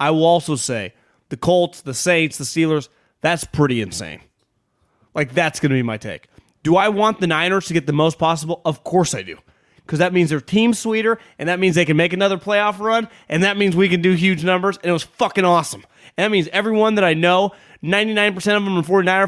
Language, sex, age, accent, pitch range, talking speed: English, male, 30-49, American, 145-205 Hz, 230 wpm